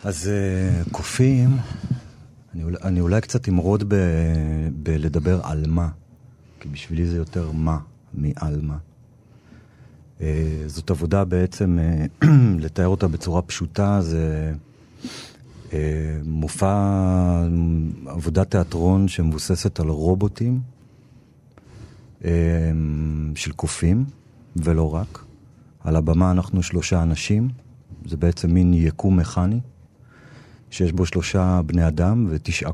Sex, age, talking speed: male, 40-59, 95 wpm